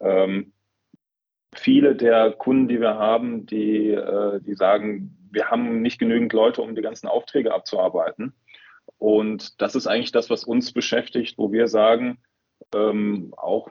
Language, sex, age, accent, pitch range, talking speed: German, male, 30-49, German, 105-125 Hz, 150 wpm